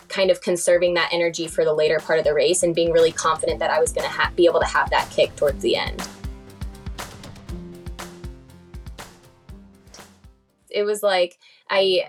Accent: American